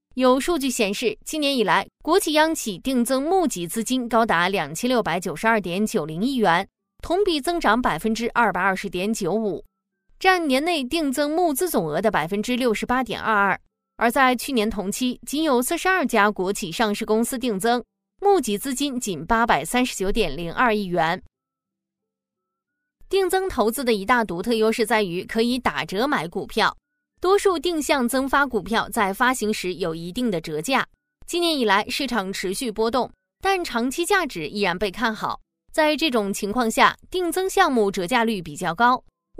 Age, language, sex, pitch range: 20-39, Chinese, female, 205-280 Hz